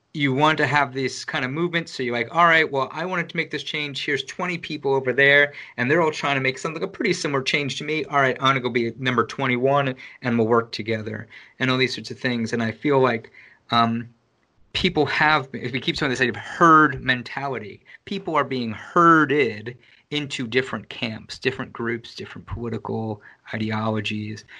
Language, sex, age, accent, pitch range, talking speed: English, male, 30-49, American, 115-150 Hz, 205 wpm